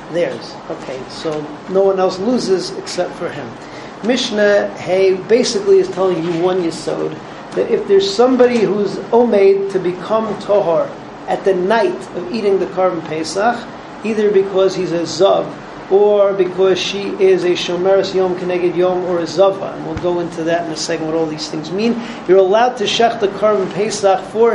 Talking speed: 180 wpm